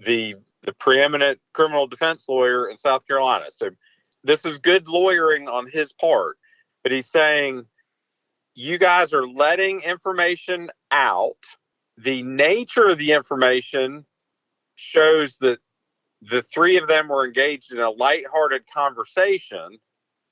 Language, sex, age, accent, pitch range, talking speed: English, male, 50-69, American, 130-175 Hz, 125 wpm